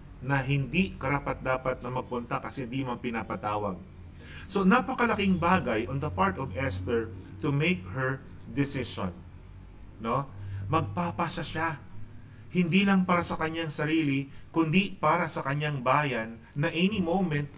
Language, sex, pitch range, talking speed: Filipino, male, 120-175 Hz, 130 wpm